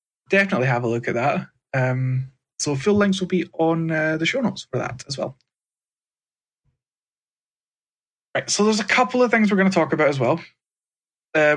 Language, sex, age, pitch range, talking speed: English, male, 20-39, 130-170 Hz, 185 wpm